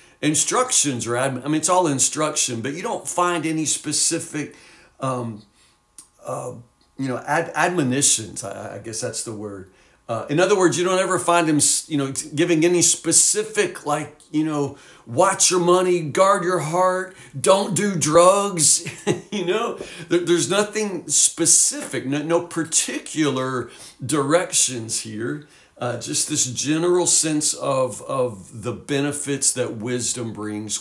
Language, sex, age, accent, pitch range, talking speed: English, male, 50-69, American, 125-170 Hz, 145 wpm